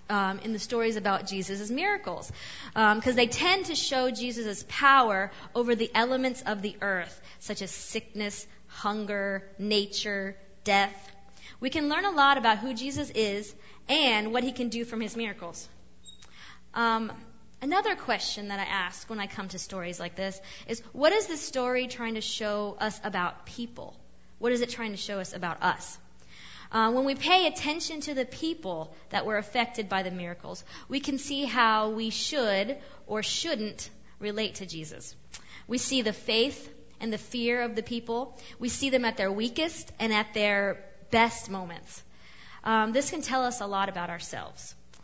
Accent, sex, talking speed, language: American, female, 175 wpm, English